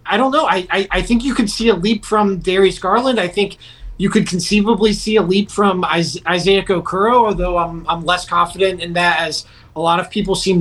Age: 30-49